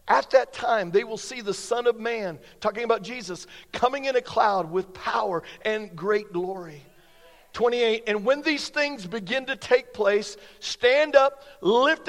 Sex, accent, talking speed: male, American, 170 wpm